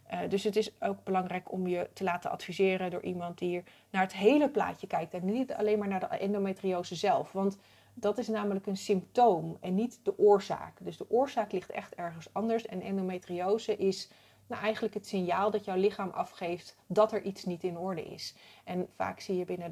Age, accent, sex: 30-49, Dutch, female